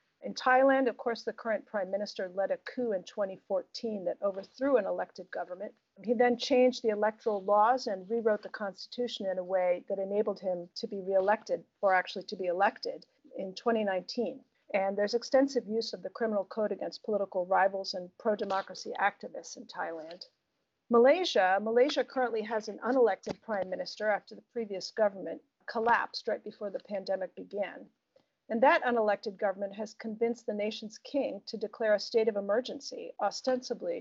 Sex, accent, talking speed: female, American, 165 wpm